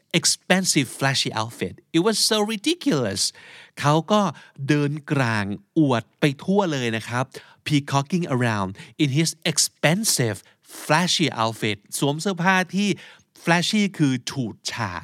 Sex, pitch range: male, 115-170 Hz